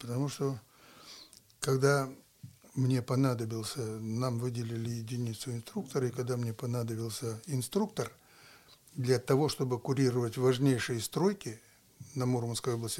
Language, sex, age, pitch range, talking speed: Russian, male, 60-79, 120-140 Hz, 105 wpm